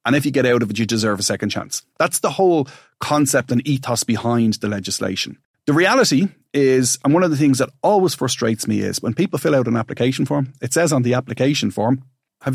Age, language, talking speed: 30-49, English, 230 wpm